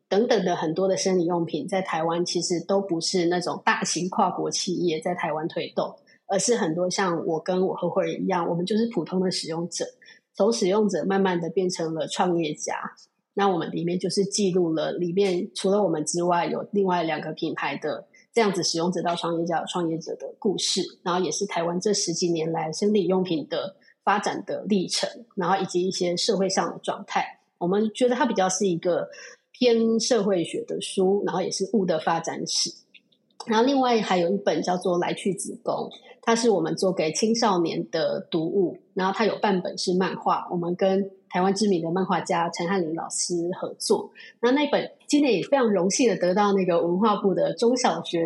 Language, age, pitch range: Chinese, 20-39, 170-200 Hz